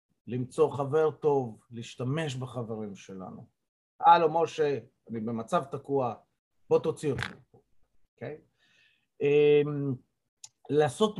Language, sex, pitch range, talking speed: Hebrew, male, 125-175 Hz, 95 wpm